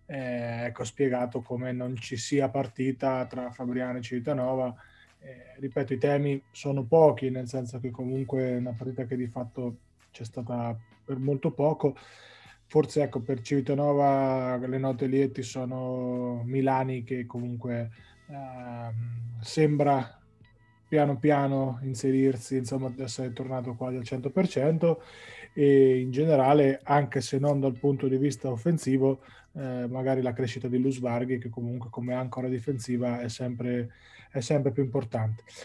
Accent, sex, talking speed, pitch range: native, male, 140 wpm, 120-135 Hz